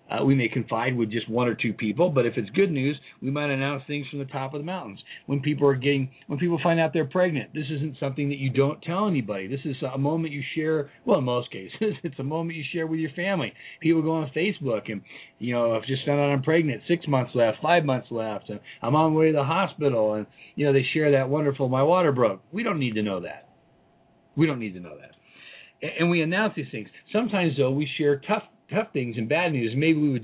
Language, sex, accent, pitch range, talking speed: English, male, American, 130-160 Hz, 250 wpm